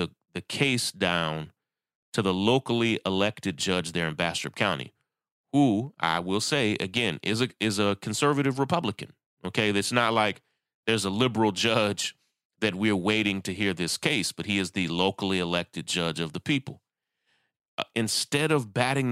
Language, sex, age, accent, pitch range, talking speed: English, male, 30-49, American, 95-125 Hz, 165 wpm